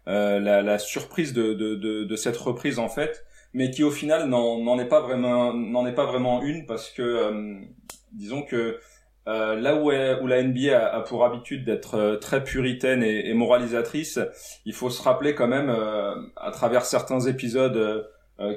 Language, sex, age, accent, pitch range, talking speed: French, male, 30-49, French, 110-130 Hz, 195 wpm